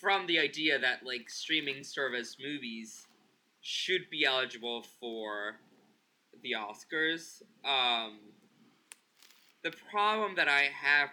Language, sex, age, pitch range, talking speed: English, male, 20-39, 125-165 Hz, 110 wpm